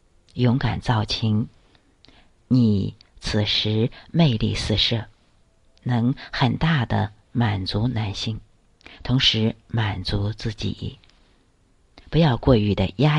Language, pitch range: Chinese, 100-125 Hz